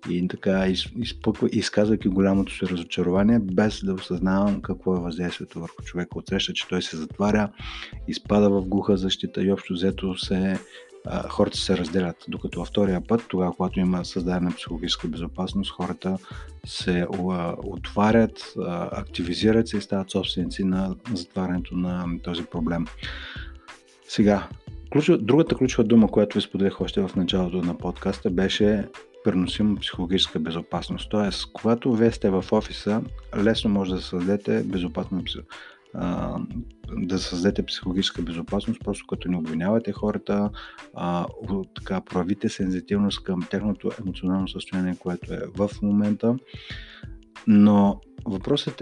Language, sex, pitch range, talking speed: Bulgarian, male, 90-110 Hz, 125 wpm